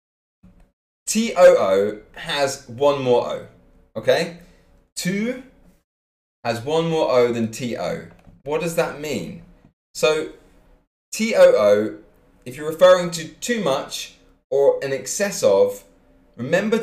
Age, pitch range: 20-39, 105-170 Hz